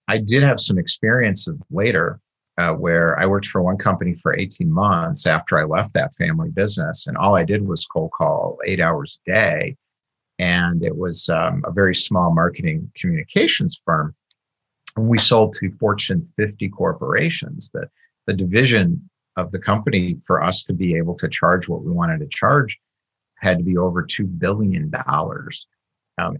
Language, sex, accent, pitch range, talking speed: English, male, American, 90-145 Hz, 170 wpm